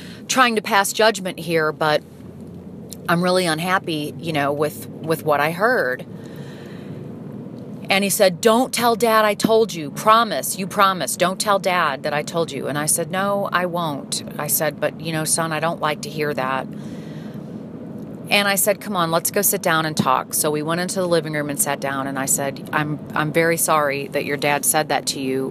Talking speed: 205 wpm